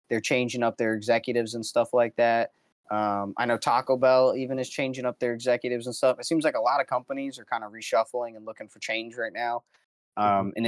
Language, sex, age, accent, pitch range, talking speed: English, male, 20-39, American, 110-130 Hz, 230 wpm